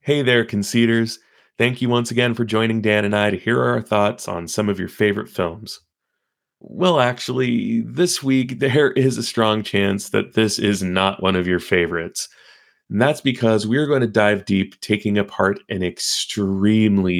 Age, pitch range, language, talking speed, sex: 30-49, 100-130 Hz, English, 180 wpm, male